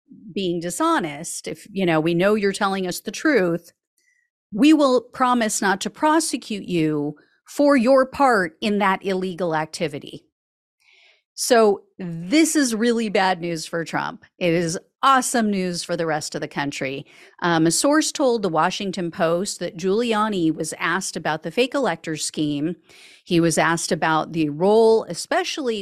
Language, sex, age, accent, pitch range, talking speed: English, female, 40-59, American, 165-220 Hz, 155 wpm